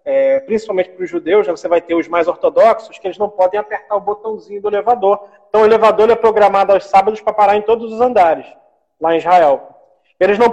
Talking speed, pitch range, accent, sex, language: 210 wpm, 190-240 Hz, Brazilian, male, Portuguese